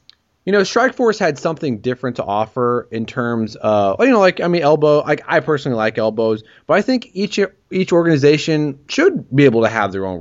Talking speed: 205 wpm